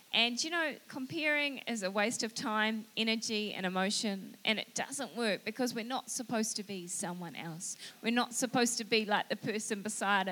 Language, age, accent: English, 20-39, Australian